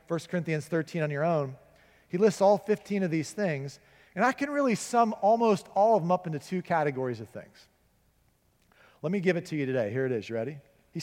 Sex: male